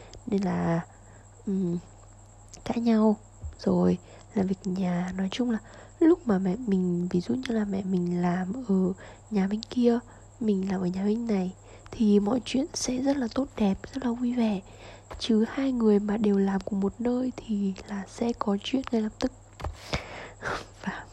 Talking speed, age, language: 175 wpm, 20-39, Vietnamese